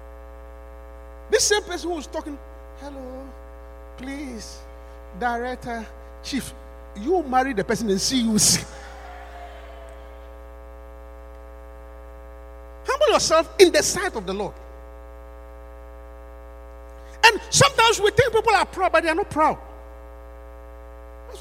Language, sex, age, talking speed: English, male, 50-69, 110 wpm